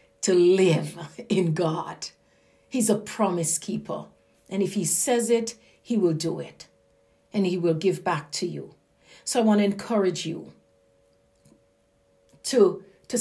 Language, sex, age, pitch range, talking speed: English, female, 50-69, 165-235 Hz, 145 wpm